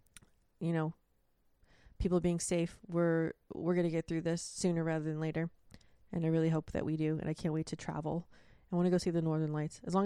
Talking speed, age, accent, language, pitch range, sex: 225 wpm, 20-39, American, English, 160-190 Hz, female